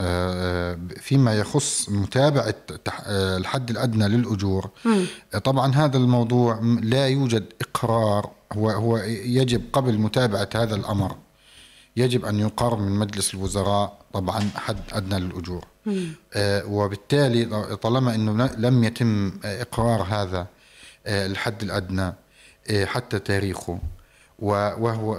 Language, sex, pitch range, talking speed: Arabic, male, 100-125 Hz, 95 wpm